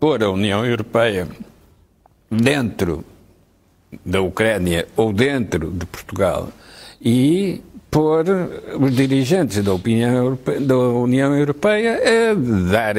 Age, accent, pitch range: 60-79, Portuguese, 105-145 Hz